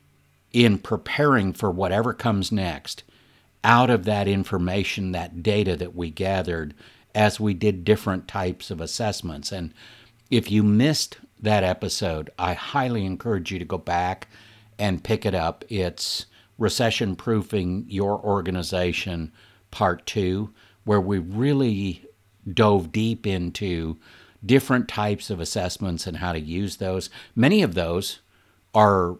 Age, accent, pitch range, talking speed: 60-79, American, 90-115 Hz, 135 wpm